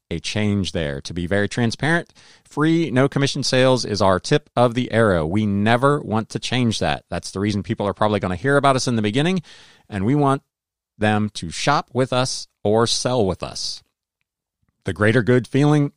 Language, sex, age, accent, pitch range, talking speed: English, male, 40-59, American, 100-130 Hz, 200 wpm